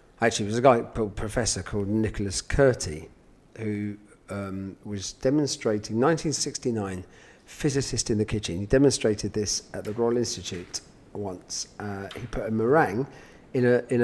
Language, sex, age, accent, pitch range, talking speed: English, male, 40-59, British, 105-135 Hz, 150 wpm